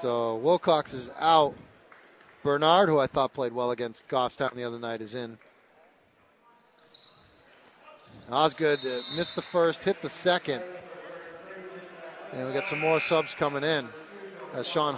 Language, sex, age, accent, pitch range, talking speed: English, male, 40-59, American, 140-160 Hz, 135 wpm